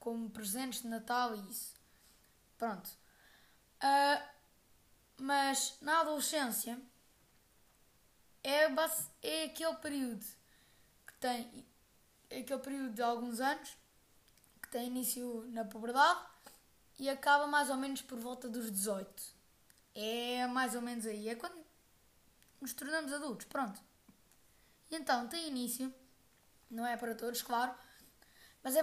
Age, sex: 20-39, female